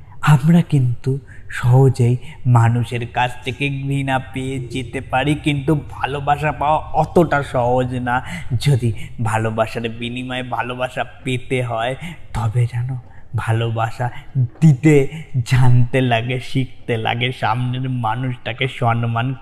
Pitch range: 115-130 Hz